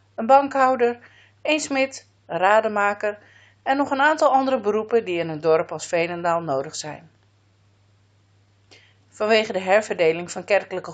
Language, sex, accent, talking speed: Dutch, female, Dutch, 135 wpm